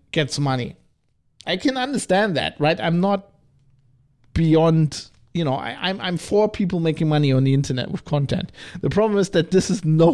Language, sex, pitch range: English, male, 135-170 Hz